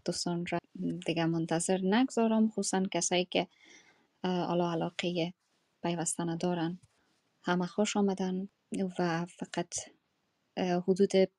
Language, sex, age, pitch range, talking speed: Persian, female, 20-39, 175-200 Hz, 95 wpm